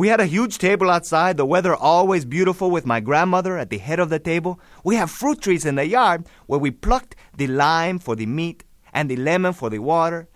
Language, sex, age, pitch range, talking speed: English, male, 30-49, 140-215 Hz, 230 wpm